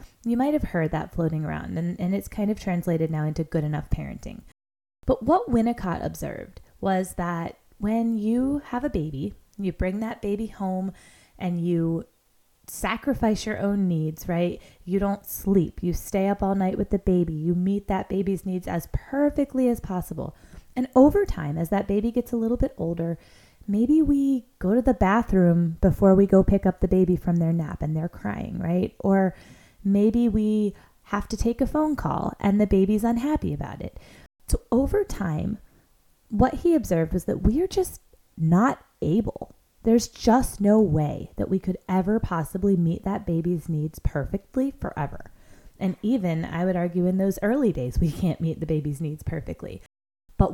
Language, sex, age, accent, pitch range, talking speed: English, female, 20-39, American, 170-225 Hz, 180 wpm